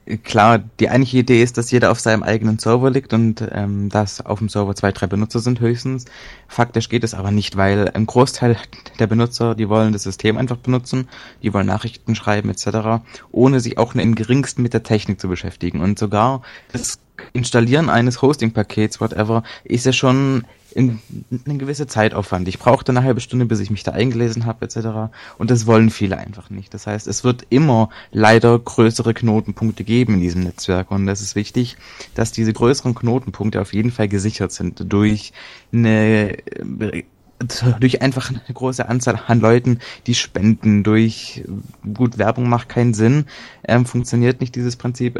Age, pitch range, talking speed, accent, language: 20-39, 105-120 Hz, 180 wpm, German, German